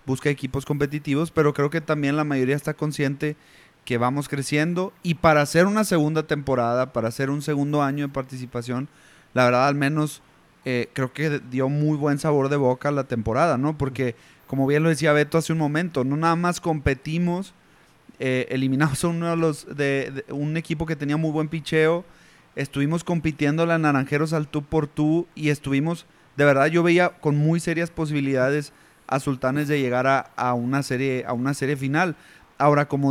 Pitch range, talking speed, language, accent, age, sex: 140-160 Hz, 185 wpm, Spanish, Mexican, 30-49, male